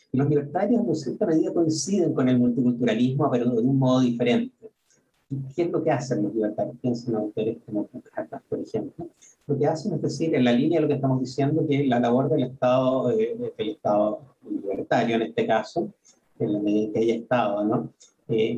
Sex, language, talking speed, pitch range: male, Spanish, 200 wpm, 120-150 Hz